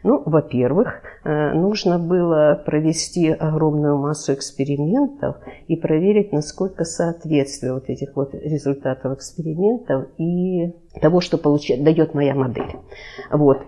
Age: 50-69